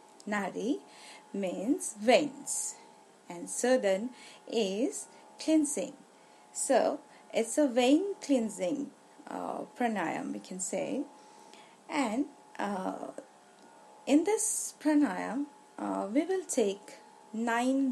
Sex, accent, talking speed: female, Indian, 95 wpm